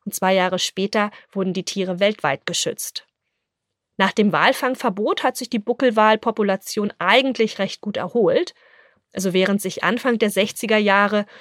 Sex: female